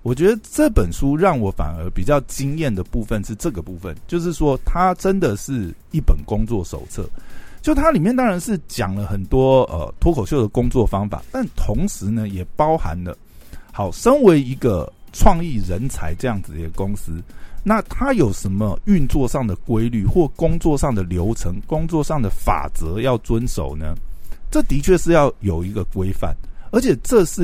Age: 50-69